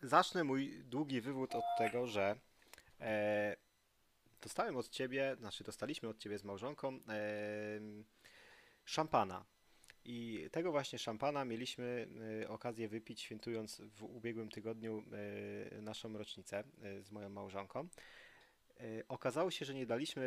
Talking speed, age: 110 wpm, 30-49